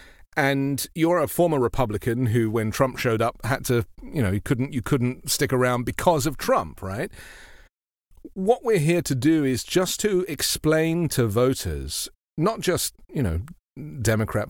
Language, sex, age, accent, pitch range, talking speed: English, male, 40-59, British, 105-135 Hz, 165 wpm